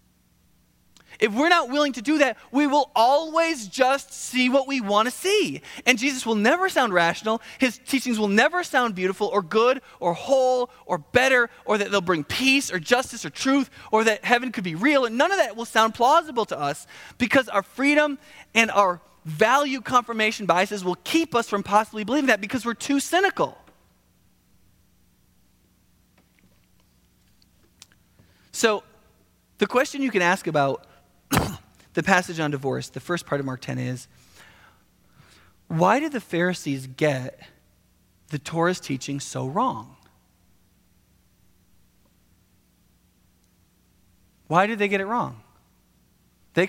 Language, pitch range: English, 155-250 Hz